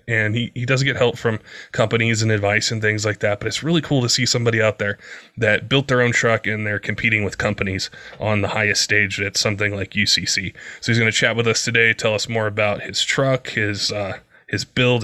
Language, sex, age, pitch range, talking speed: English, male, 20-39, 105-115 Hz, 235 wpm